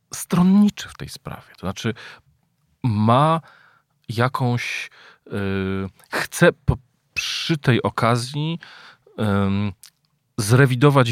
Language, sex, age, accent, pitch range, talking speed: Polish, male, 40-59, native, 85-120 Hz, 70 wpm